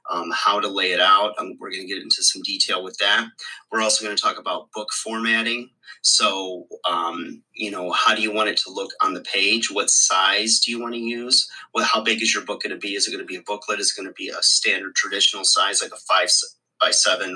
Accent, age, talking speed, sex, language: American, 30-49, 260 wpm, male, English